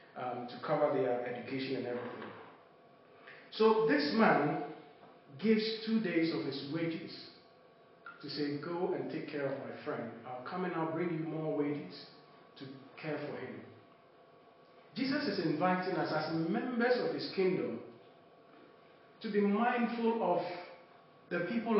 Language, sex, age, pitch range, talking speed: English, male, 40-59, 145-190 Hz, 145 wpm